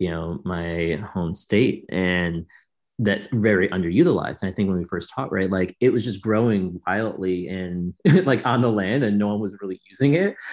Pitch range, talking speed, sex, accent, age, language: 90-115 Hz, 200 wpm, male, American, 30-49, English